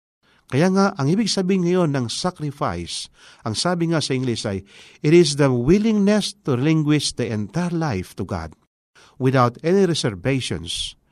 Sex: male